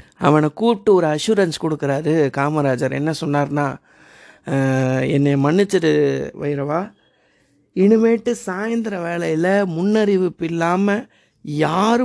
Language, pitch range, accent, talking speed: Tamil, 145-195 Hz, native, 85 wpm